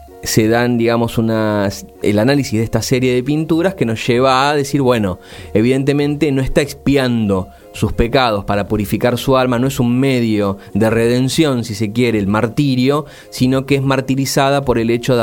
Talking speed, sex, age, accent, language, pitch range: 180 wpm, male, 30-49, Argentinian, Spanish, 105-135 Hz